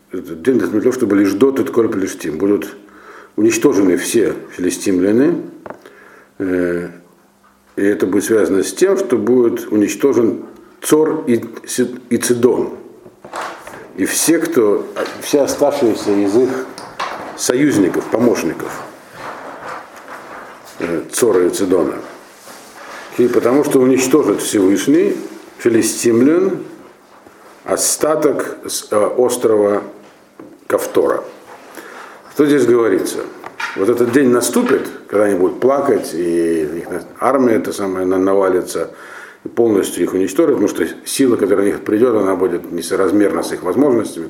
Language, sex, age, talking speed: Russian, male, 50-69, 100 wpm